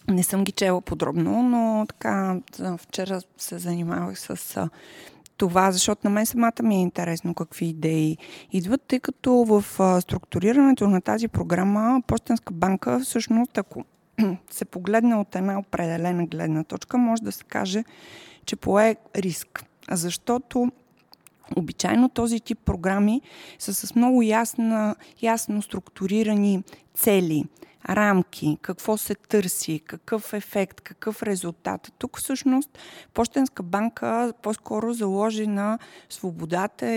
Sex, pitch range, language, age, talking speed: female, 180-230 Hz, Bulgarian, 20-39, 120 wpm